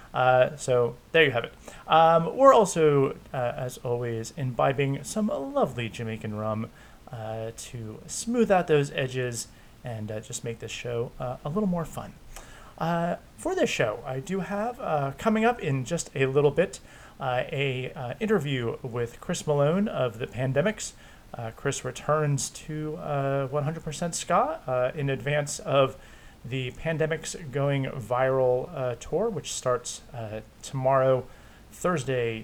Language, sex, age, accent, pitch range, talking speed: English, male, 30-49, American, 125-155 Hz, 150 wpm